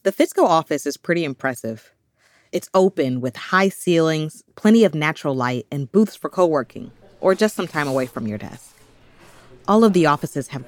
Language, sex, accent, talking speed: English, female, American, 180 wpm